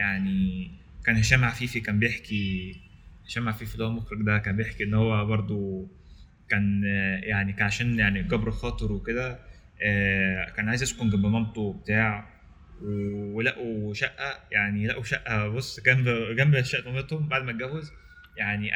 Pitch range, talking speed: 100-130 Hz, 145 wpm